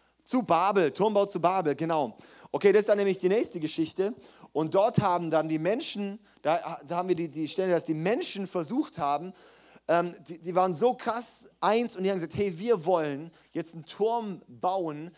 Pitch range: 150-195 Hz